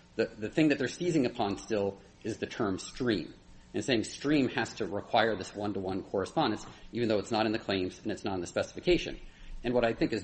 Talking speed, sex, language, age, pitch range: 230 wpm, male, English, 40-59, 95-140 Hz